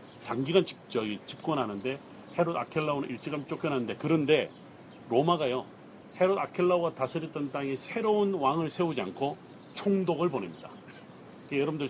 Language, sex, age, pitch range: Korean, male, 40-59, 130-175 Hz